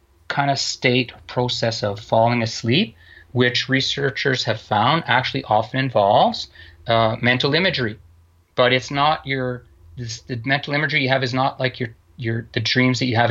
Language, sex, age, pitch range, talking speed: English, male, 30-49, 115-140 Hz, 165 wpm